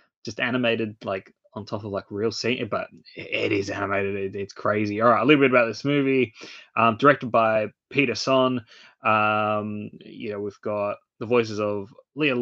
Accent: Australian